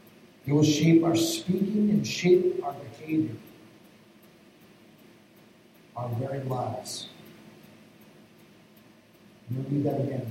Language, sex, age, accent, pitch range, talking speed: English, male, 50-69, American, 120-160 Hz, 95 wpm